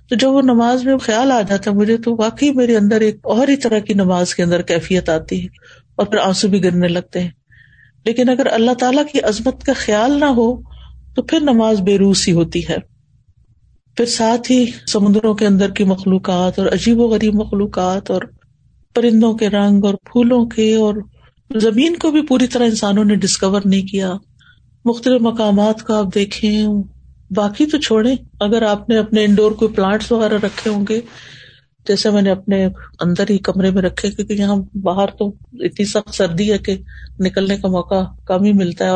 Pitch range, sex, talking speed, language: 195-235 Hz, female, 190 wpm, Urdu